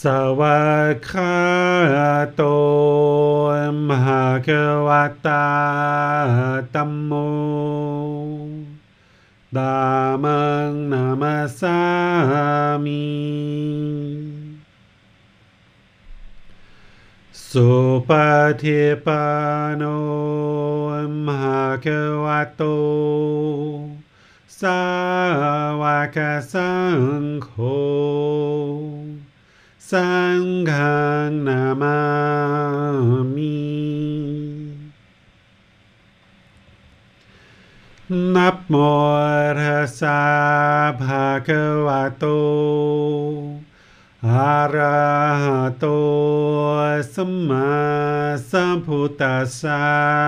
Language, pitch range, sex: English, 145-150 Hz, male